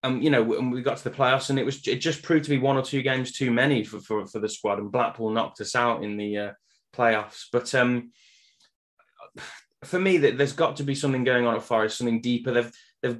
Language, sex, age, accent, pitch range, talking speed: English, male, 20-39, British, 110-140 Hz, 250 wpm